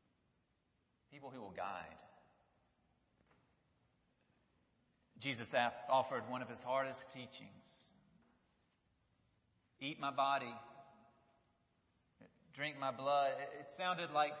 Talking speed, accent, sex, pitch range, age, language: 85 wpm, American, male, 140-175 Hz, 40-59, English